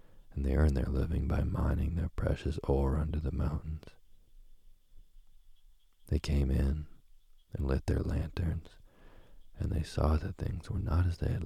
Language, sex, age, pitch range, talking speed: English, male, 40-59, 75-90 Hz, 155 wpm